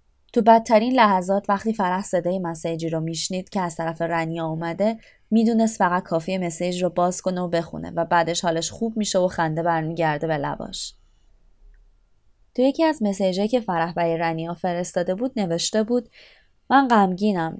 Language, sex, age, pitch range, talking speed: Persian, female, 20-39, 165-210 Hz, 160 wpm